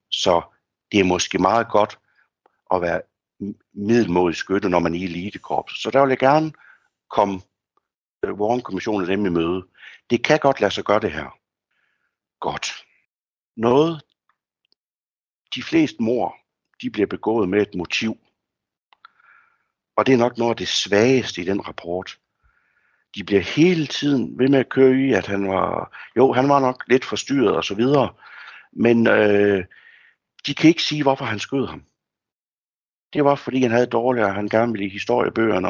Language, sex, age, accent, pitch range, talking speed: Danish, male, 60-79, native, 95-130 Hz, 160 wpm